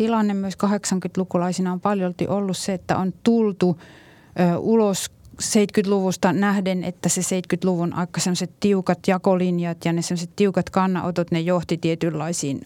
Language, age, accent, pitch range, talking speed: Finnish, 30-49, native, 170-190 Hz, 130 wpm